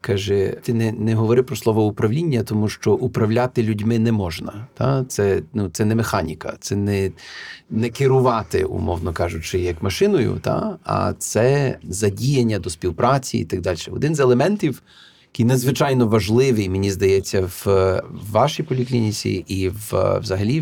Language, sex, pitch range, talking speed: Ukrainian, male, 95-120 Hz, 150 wpm